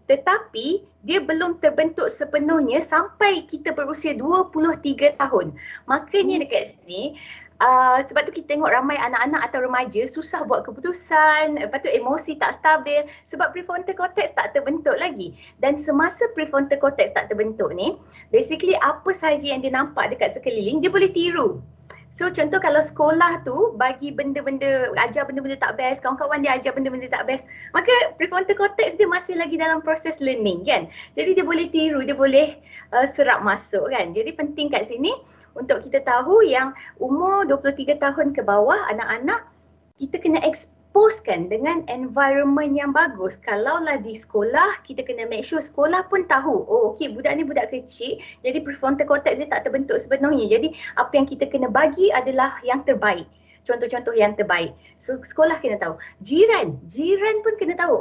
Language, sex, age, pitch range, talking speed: Malay, female, 20-39, 270-340 Hz, 160 wpm